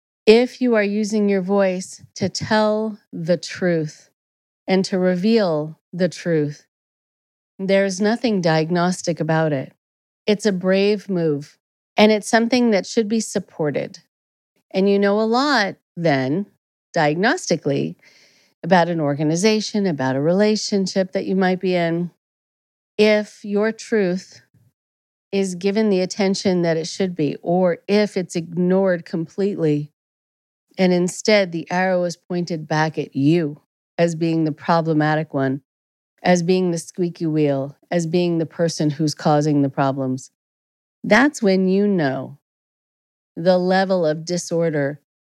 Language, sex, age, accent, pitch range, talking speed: English, female, 40-59, American, 155-195 Hz, 130 wpm